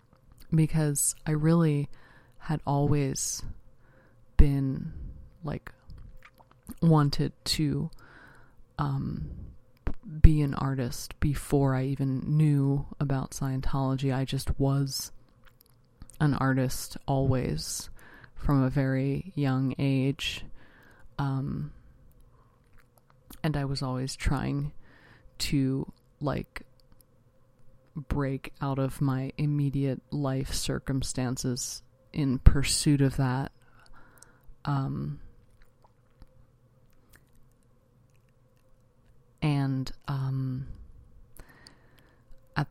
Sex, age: female, 20-39